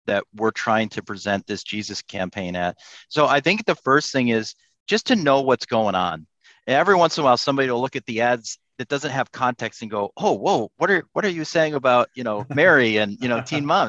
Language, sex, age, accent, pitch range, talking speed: English, male, 40-59, American, 115-145 Hz, 240 wpm